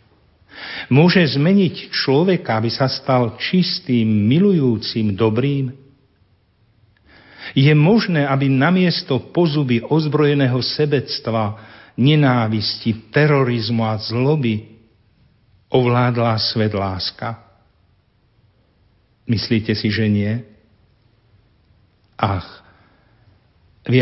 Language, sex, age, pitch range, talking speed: Slovak, male, 50-69, 110-145 Hz, 70 wpm